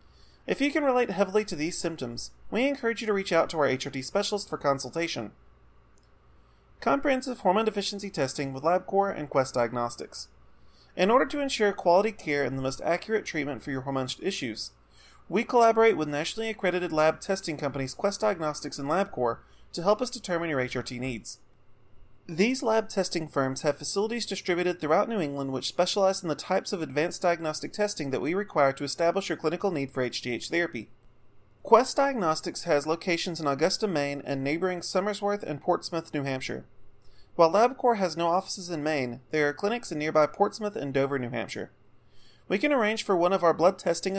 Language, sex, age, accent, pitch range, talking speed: English, male, 30-49, American, 135-200 Hz, 180 wpm